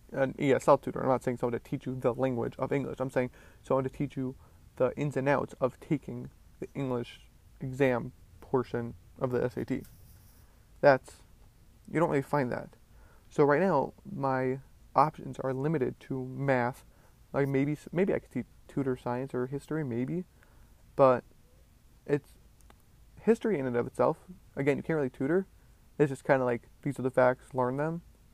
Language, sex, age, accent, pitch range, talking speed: English, male, 20-39, American, 130-155 Hz, 175 wpm